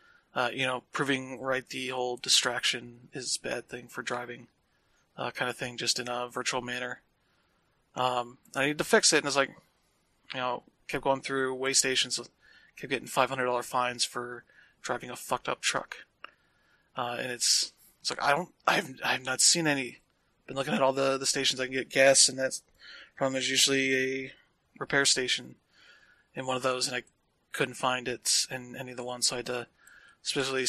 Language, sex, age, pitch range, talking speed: English, male, 20-39, 125-135 Hz, 200 wpm